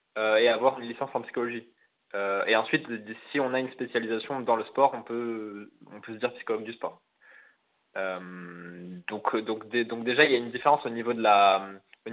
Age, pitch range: 20-39, 110-135 Hz